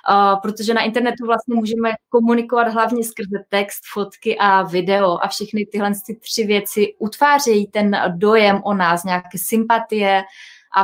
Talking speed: 150 wpm